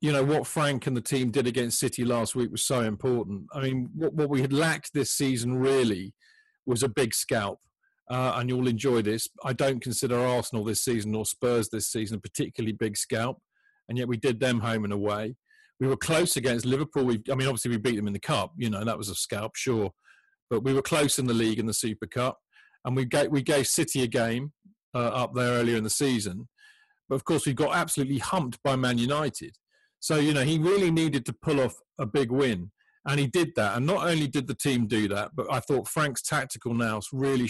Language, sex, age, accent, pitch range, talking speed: English, male, 40-59, British, 115-150 Hz, 230 wpm